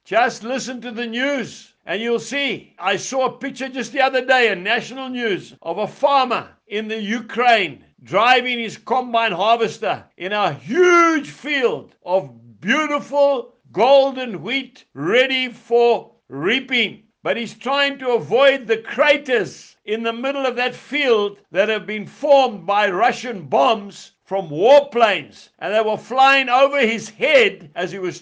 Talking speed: 155 wpm